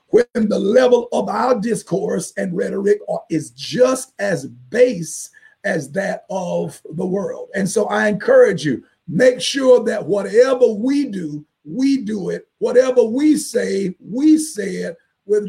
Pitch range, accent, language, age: 205-270 Hz, American, English, 50-69